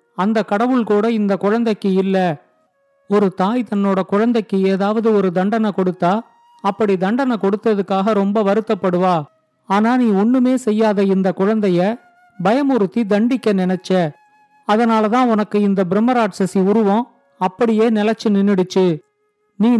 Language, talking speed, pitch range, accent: Tamil, 110 wpm, 195-225 Hz, native